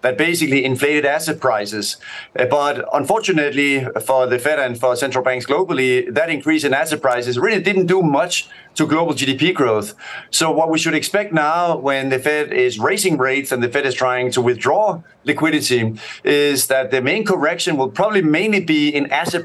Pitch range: 130-165 Hz